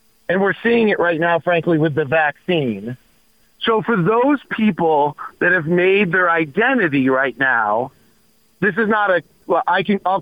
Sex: male